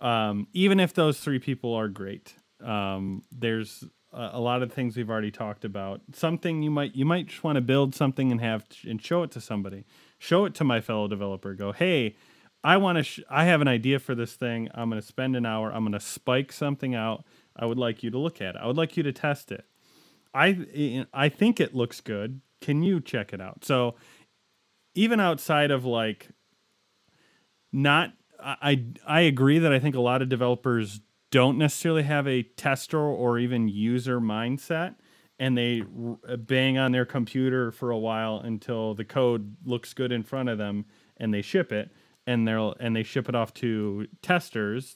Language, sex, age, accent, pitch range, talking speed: English, male, 30-49, American, 110-140 Hz, 200 wpm